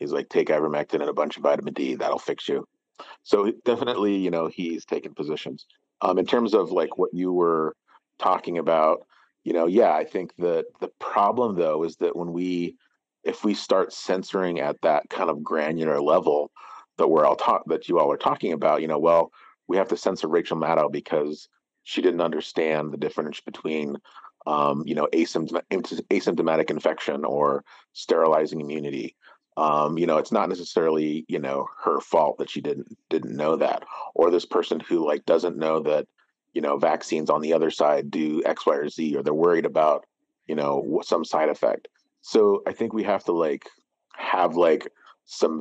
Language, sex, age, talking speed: English, male, 40-59, 185 wpm